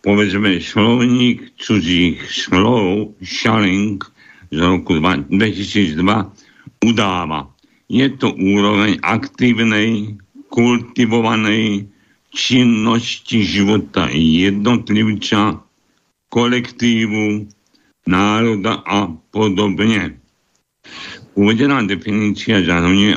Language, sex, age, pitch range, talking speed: Slovak, male, 60-79, 95-120 Hz, 60 wpm